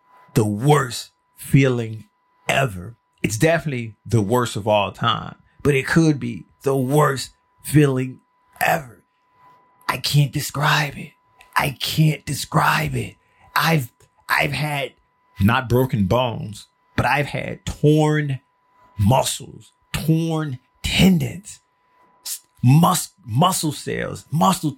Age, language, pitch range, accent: 30-49, English, 125-165 Hz, American